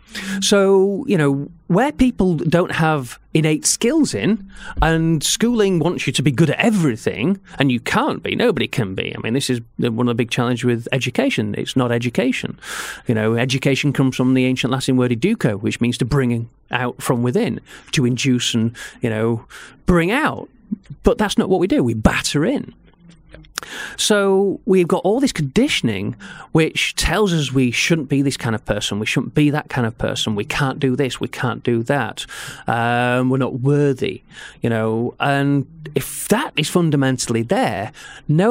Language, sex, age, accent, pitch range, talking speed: English, male, 30-49, British, 125-175 Hz, 180 wpm